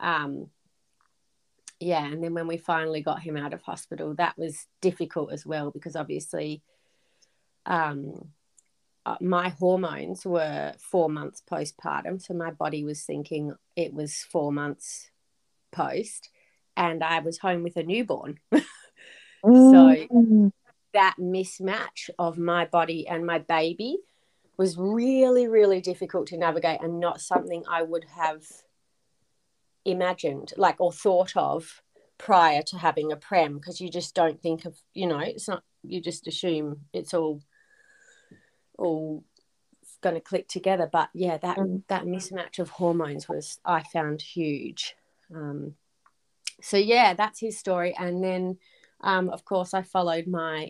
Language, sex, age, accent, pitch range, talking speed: English, female, 30-49, Australian, 160-185 Hz, 140 wpm